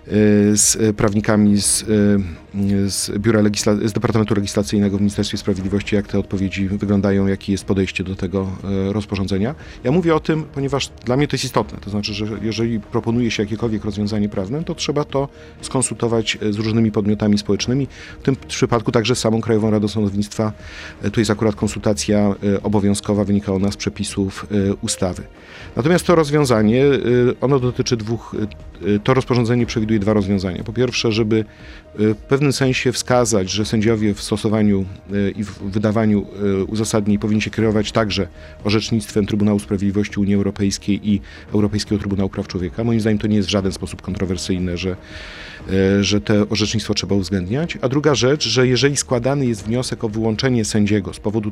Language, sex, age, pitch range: Polish, male, 40-59, 100-115 Hz